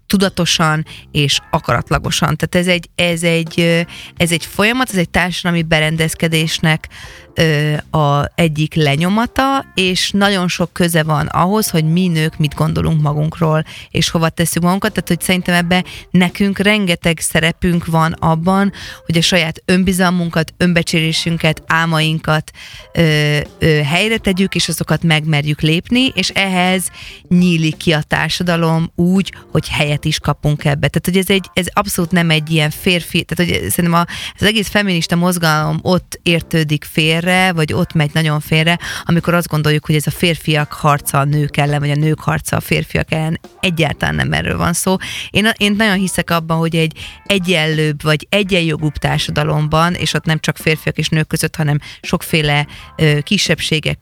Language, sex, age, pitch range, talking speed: Hungarian, female, 30-49, 155-180 Hz, 150 wpm